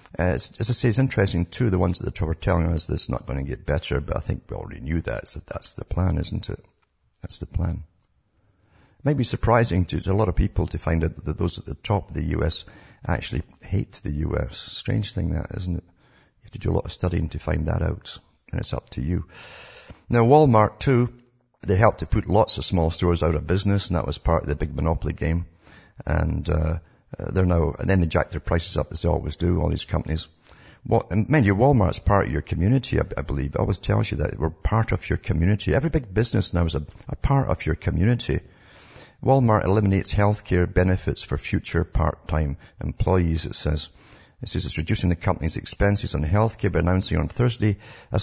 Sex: male